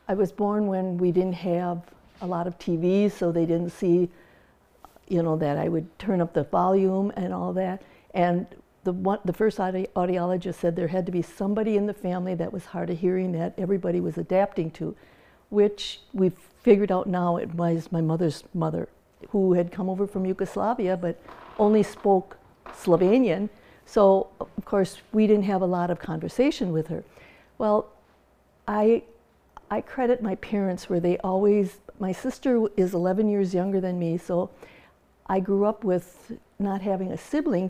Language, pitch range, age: English, 180-205 Hz, 60-79